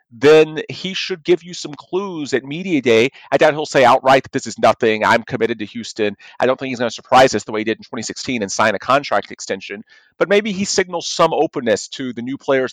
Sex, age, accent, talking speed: male, 40-59, American, 245 wpm